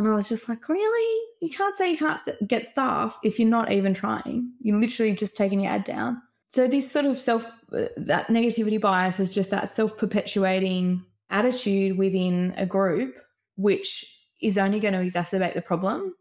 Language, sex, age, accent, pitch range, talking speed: English, female, 20-39, Australian, 185-235 Hz, 180 wpm